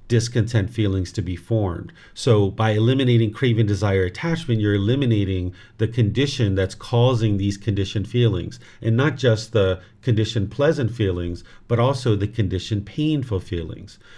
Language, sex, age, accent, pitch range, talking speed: English, male, 40-59, American, 100-120 Hz, 140 wpm